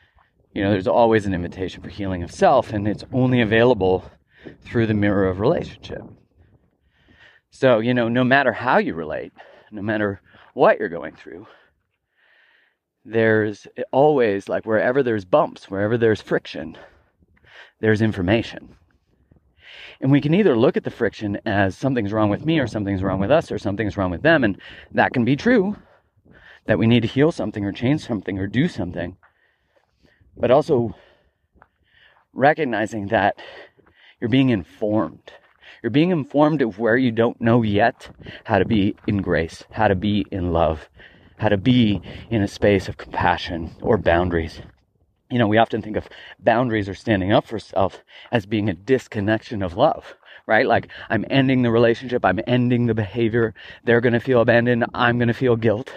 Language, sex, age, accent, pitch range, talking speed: English, male, 30-49, American, 100-120 Hz, 170 wpm